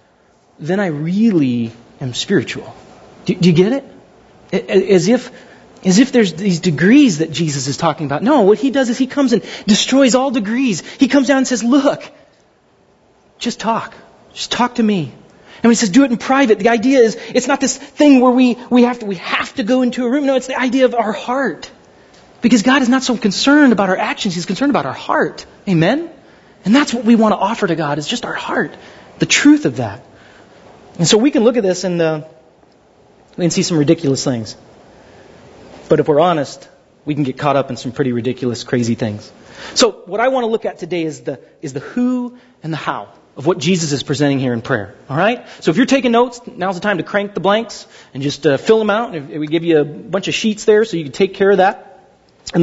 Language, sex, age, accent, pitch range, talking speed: English, male, 30-49, American, 165-250 Hz, 230 wpm